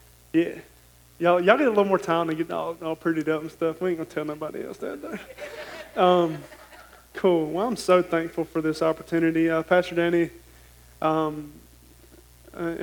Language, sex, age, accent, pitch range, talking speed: English, male, 20-39, American, 155-180 Hz, 180 wpm